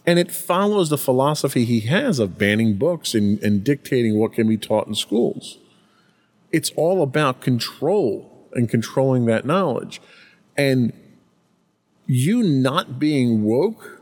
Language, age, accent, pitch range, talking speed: English, 40-59, American, 115-175 Hz, 135 wpm